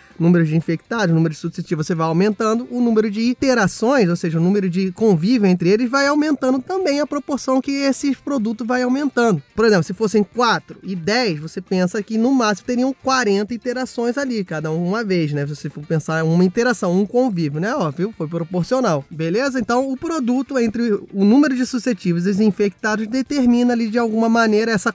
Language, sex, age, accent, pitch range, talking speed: Portuguese, male, 20-39, Brazilian, 185-250 Hz, 195 wpm